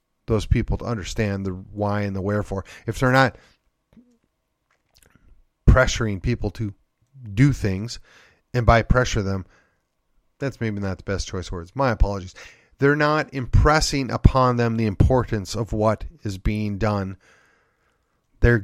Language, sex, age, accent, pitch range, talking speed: English, male, 30-49, American, 105-135 Hz, 140 wpm